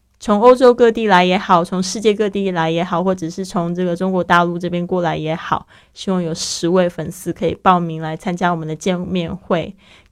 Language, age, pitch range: Chinese, 20-39, 180-205 Hz